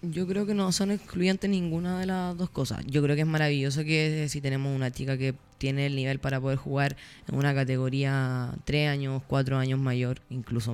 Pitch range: 145-185 Hz